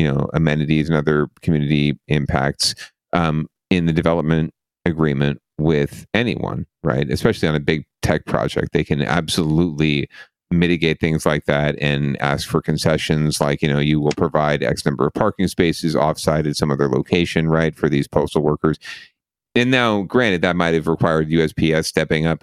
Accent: American